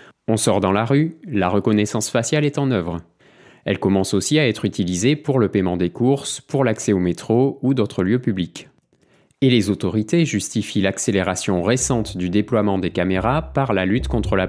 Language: French